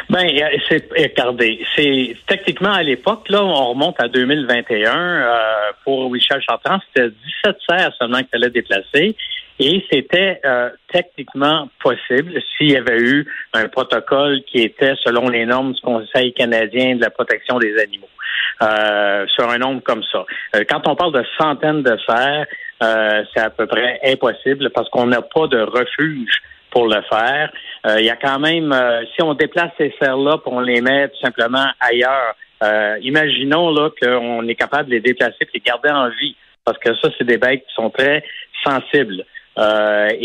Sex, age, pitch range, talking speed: male, 60-79, 120-150 Hz, 175 wpm